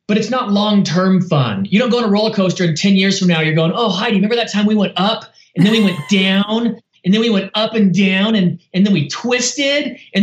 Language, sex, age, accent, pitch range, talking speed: English, male, 30-49, American, 160-220 Hz, 265 wpm